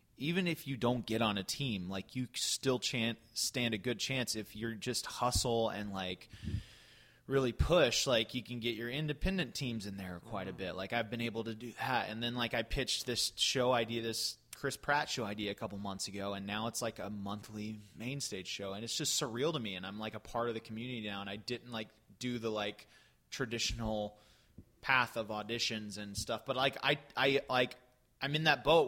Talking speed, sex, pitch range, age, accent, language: 220 wpm, male, 105-135 Hz, 20-39, American, English